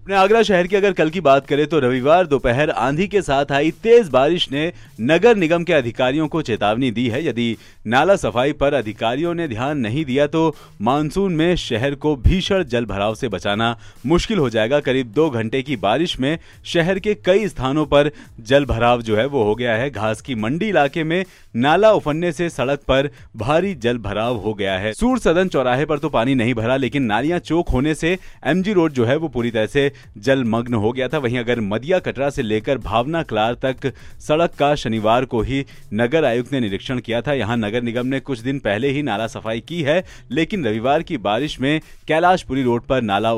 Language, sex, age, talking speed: Hindi, male, 30-49, 205 wpm